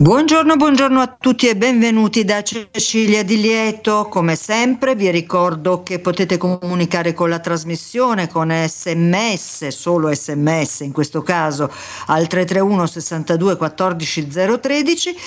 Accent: native